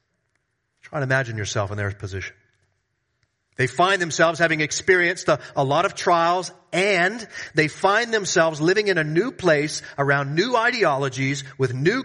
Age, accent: 40-59, American